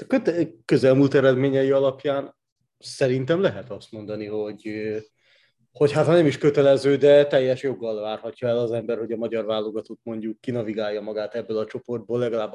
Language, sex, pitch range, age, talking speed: Hungarian, male, 110-140 Hz, 30-49, 150 wpm